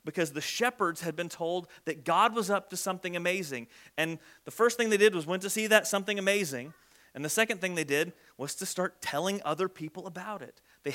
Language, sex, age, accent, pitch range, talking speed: English, male, 30-49, American, 145-200 Hz, 225 wpm